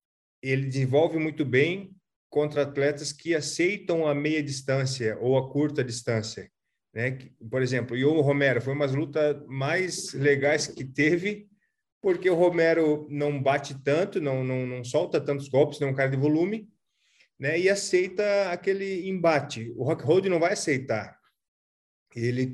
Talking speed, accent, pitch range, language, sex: 155 wpm, Brazilian, 135-165 Hz, English, male